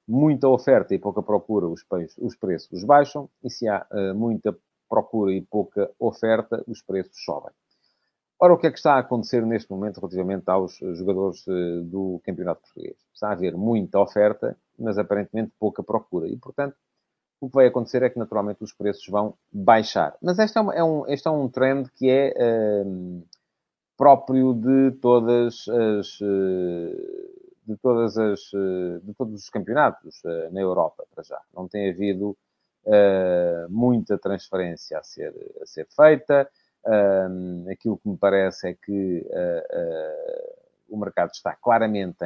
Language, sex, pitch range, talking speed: English, male, 95-130 Hz, 150 wpm